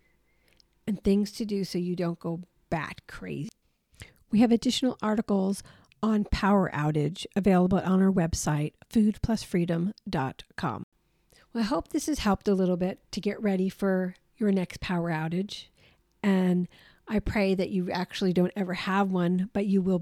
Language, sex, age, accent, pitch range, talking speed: English, female, 50-69, American, 170-210 Hz, 155 wpm